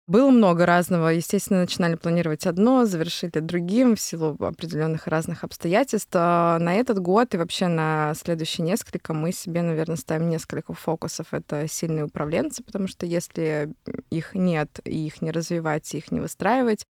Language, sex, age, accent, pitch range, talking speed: Russian, female, 20-39, native, 160-185 Hz, 165 wpm